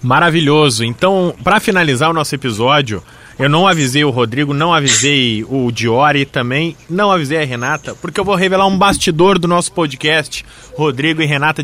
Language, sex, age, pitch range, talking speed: Portuguese, male, 20-39, 145-195 Hz, 175 wpm